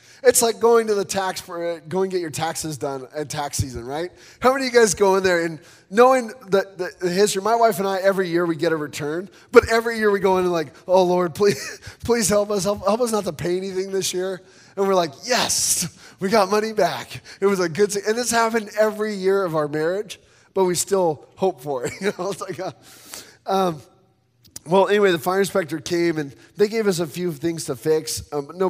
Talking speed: 240 wpm